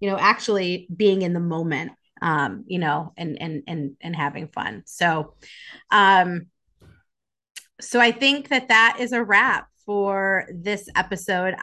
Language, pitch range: English, 185-235 Hz